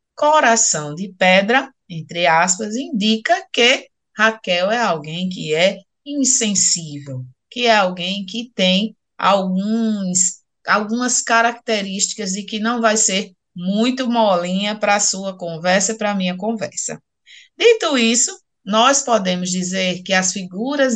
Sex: female